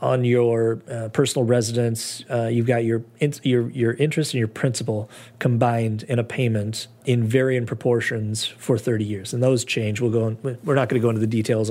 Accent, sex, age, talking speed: American, male, 30-49, 205 wpm